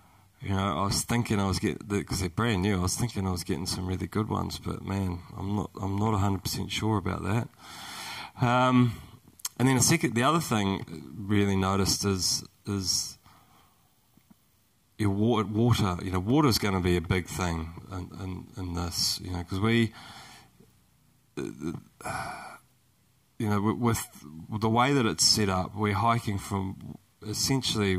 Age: 30-49